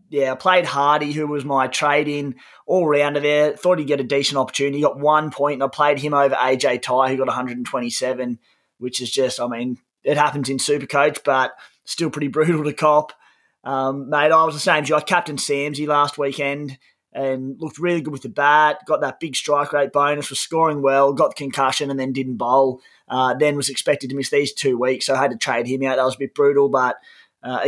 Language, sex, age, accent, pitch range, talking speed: English, male, 20-39, Australian, 135-155 Hz, 225 wpm